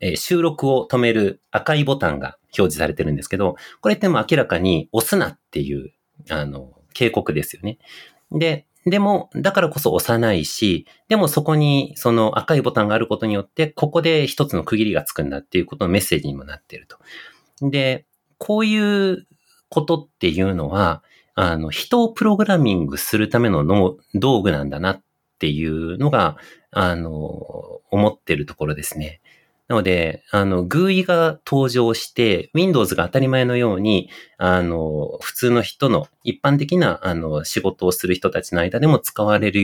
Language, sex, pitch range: Japanese, male, 90-150 Hz